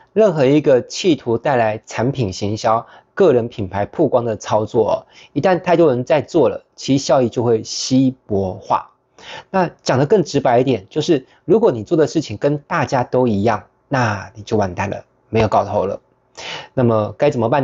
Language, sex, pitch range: Chinese, male, 110-135 Hz